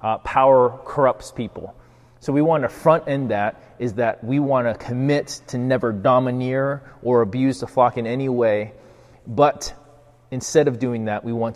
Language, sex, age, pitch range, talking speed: English, male, 30-49, 110-125 Hz, 175 wpm